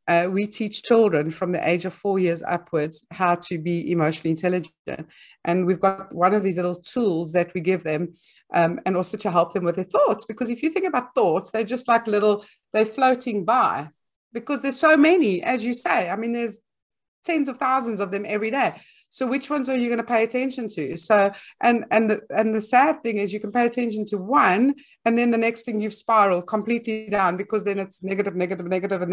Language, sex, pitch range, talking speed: English, female, 195-255 Hz, 220 wpm